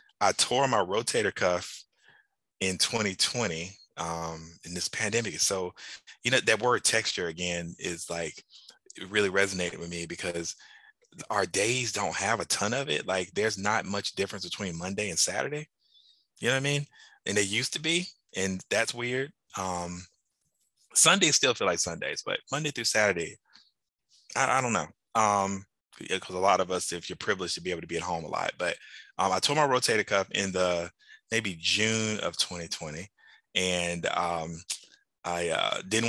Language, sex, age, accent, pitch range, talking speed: English, male, 20-39, American, 85-105 Hz, 180 wpm